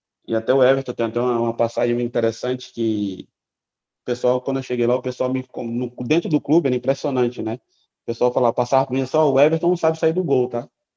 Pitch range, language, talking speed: 120-155 Hz, Portuguese, 225 wpm